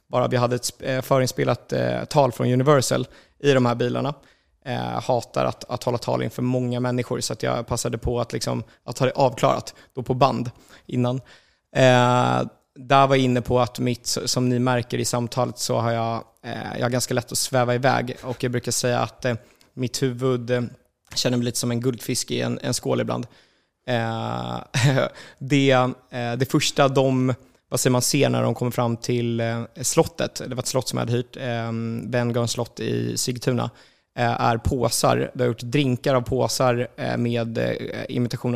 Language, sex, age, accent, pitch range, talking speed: English, male, 20-39, Swedish, 115-130 Hz, 175 wpm